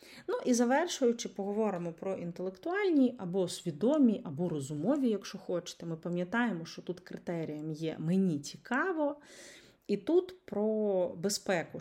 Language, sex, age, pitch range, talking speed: Ukrainian, female, 30-49, 170-235 Hz, 120 wpm